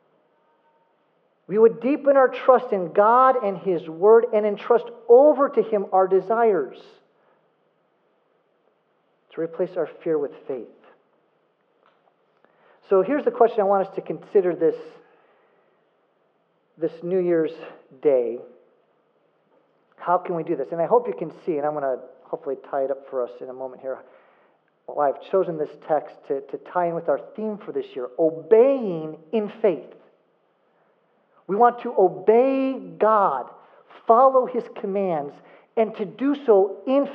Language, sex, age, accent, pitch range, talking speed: English, male, 40-59, American, 185-285 Hz, 150 wpm